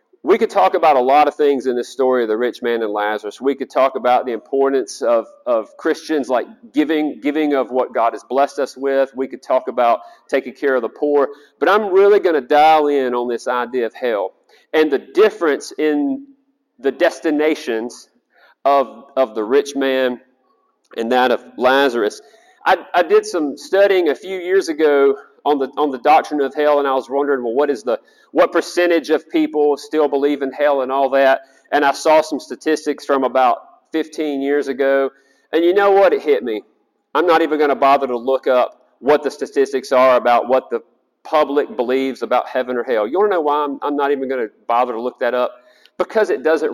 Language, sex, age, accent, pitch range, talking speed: English, male, 40-59, American, 130-175 Hz, 210 wpm